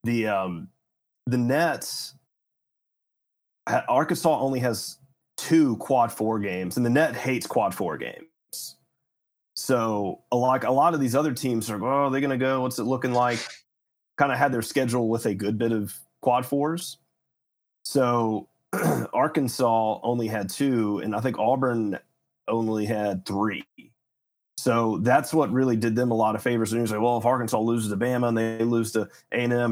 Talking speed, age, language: 170 wpm, 30-49, English